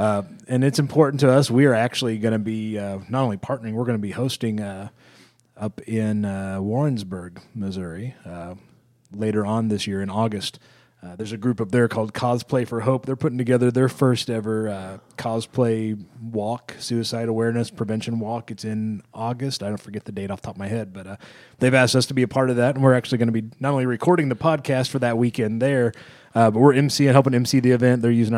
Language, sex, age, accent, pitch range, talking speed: English, male, 30-49, American, 110-130 Hz, 225 wpm